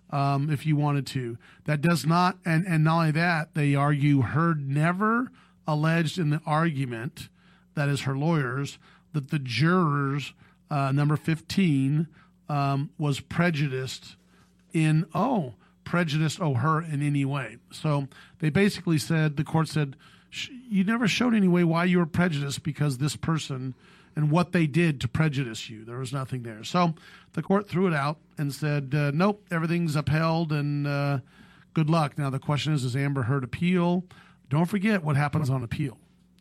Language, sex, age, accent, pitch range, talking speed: English, male, 40-59, American, 140-175 Hz, 170 wpm